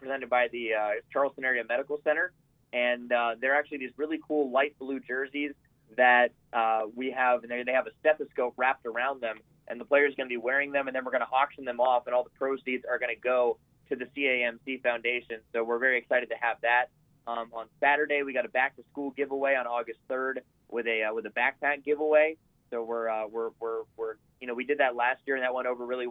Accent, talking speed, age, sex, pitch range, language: American, 240 wpm, 20-39, male, 120-140 Hz, English